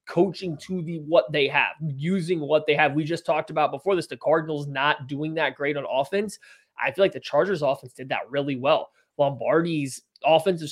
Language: English